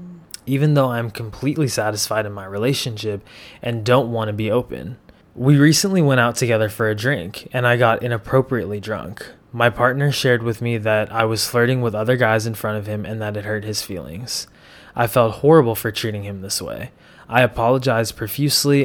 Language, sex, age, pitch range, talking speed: English, male, 20-39, 105-130 Hz, 190 wpm